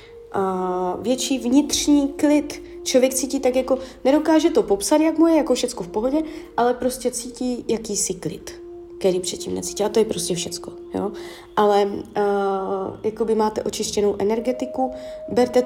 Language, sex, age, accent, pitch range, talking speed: Czech, female, 20-39, native, 205-260 Hz, 155 wpm